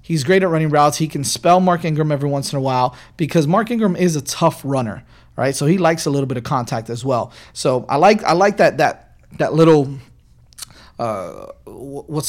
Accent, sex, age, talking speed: American, male, 30-49, 215 wpm